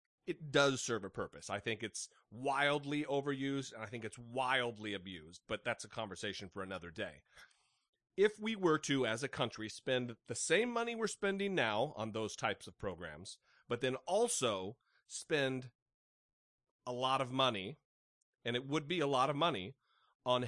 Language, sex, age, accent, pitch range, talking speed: English, male, 30-49, American, 115-165 Hz, 175 wpm